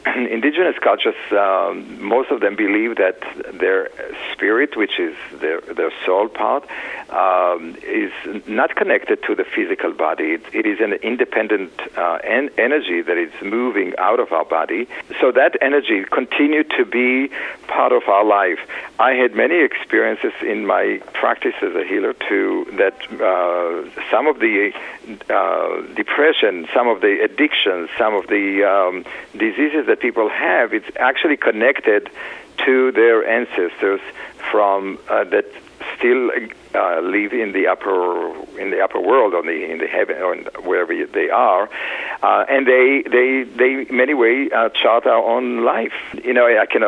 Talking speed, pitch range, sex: 155 wpm, 325-445 Hz, male